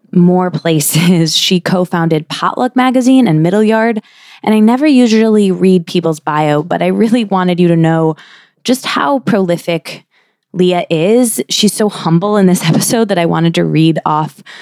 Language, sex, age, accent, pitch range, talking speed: English, female, 20-39, American, 160-205 Hz, 165 wpm